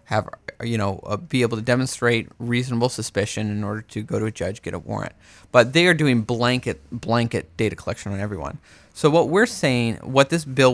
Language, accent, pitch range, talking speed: English, American, 105-130 Hz, 205 wpm